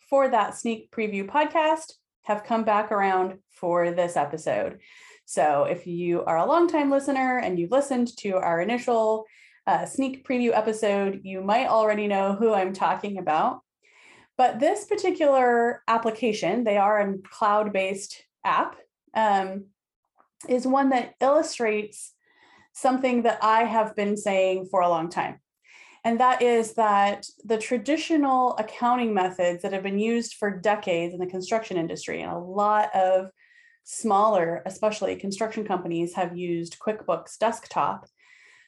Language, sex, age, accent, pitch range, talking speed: English, female, 30-49, American, 195-260 Hz, 145 wpm